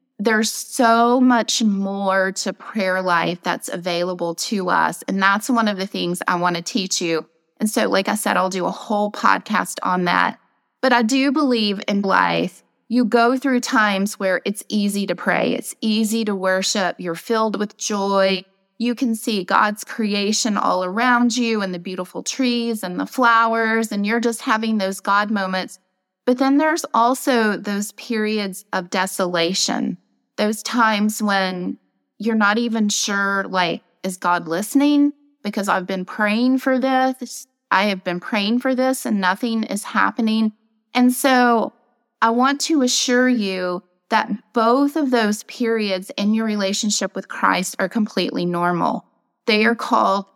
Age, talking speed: 20-39, 165 wpm